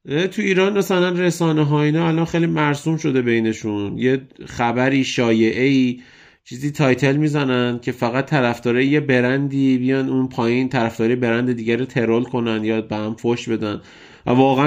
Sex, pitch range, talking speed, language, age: male, 110-140 Hz, 160 wpm, Persian, 30-49